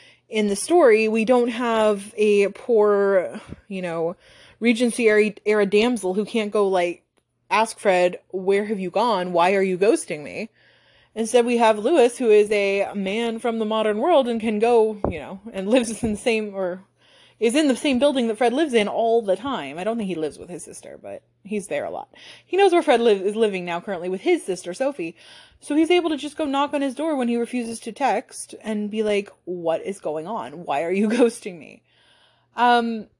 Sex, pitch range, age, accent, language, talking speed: female, 195-235 Hz, 20-39, American, English, 210 wpm